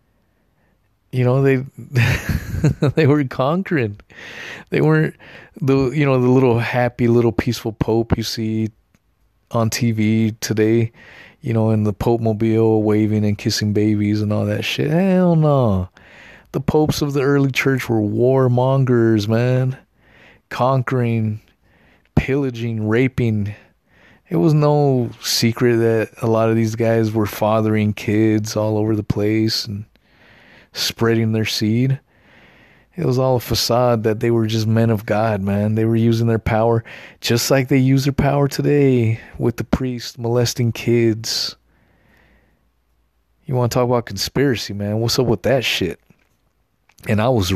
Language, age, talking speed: English, 30-49, 145 wpm